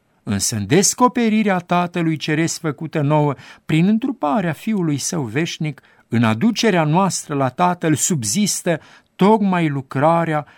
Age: 50-69